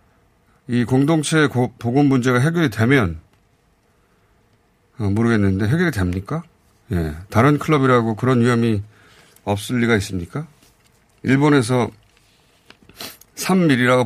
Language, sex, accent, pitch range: Korean, male, native, 100-135 Hz